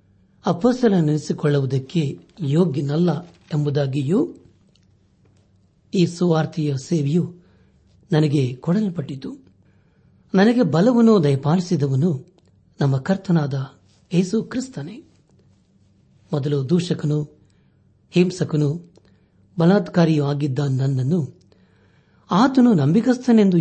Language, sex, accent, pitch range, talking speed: Kannada, male, native, 140-175 Hz, 60 wpm